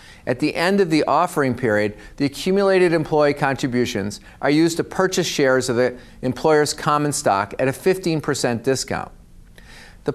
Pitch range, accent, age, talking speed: 120-160 Hz, American, 40-59, 155 wpm